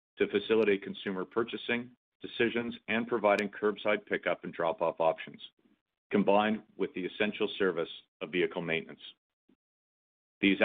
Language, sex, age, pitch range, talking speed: English, male, 50-69, 95-115 Hz, 120 wpm